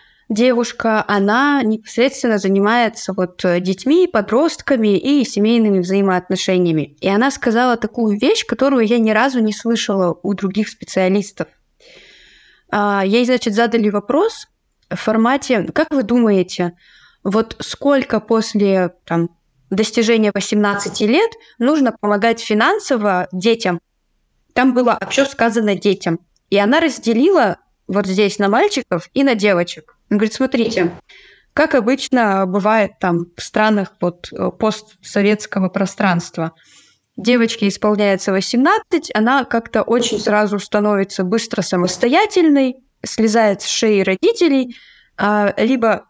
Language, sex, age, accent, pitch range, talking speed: Russian, female, 20-39, native, 195-250 Hz, 110 wpm